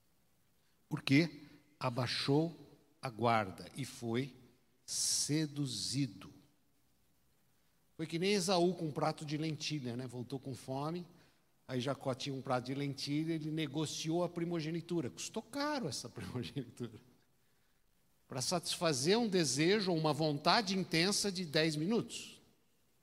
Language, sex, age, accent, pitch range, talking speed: Portuguese, male, 60-79, Brazilian, 125-170 Hz, 120 wpm